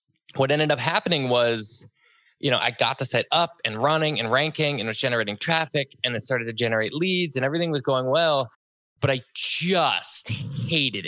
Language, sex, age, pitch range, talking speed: English, male, 20-39, 110-145 Hz, 190 wpm